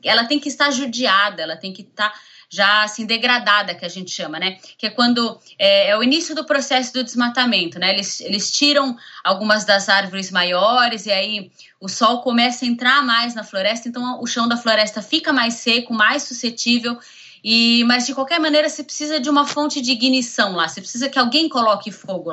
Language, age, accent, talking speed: Portuguese, 20-39, Brazilian, 200 wpm